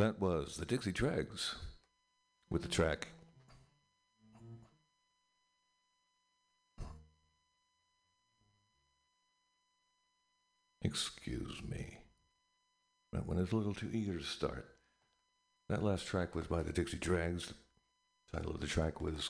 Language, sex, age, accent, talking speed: English, male, 60-79, American, 105 wpm